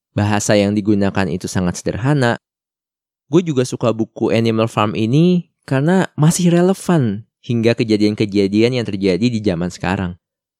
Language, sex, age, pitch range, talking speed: Indonesian, male, 20-39, 105-130 Hz, 130 wpm